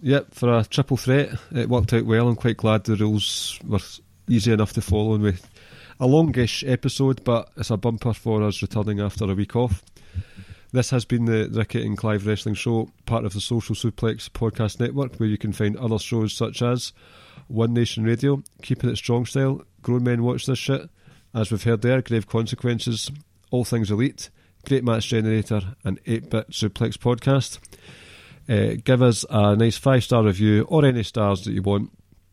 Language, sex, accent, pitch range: English, male, British, 105-125 Hz